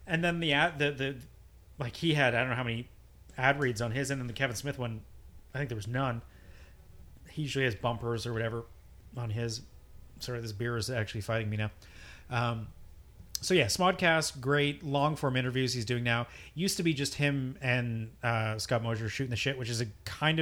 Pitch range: 110-135 Hz